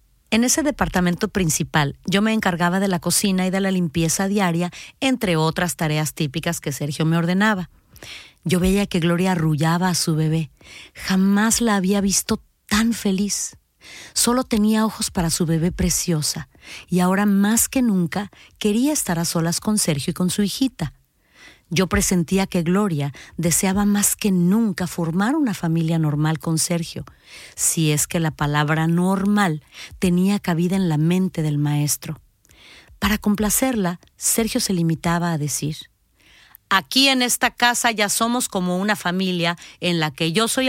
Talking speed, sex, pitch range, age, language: 160 wpm, female, 160-205 Hz, 40-59, Spanish